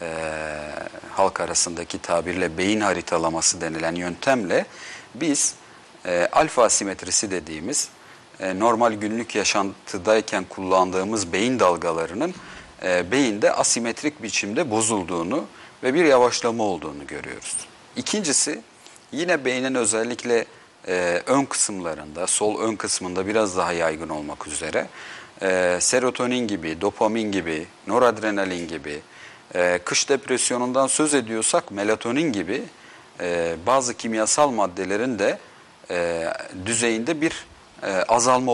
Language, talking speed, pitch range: Turkish, 100 wpm, 90-120 Hz